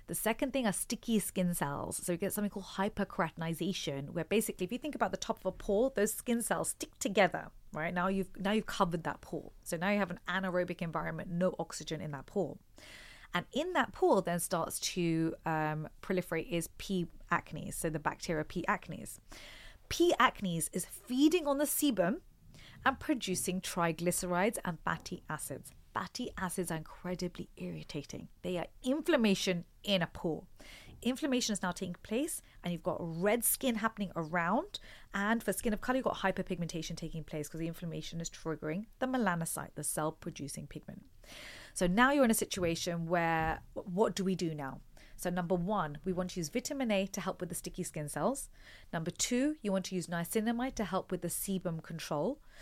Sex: female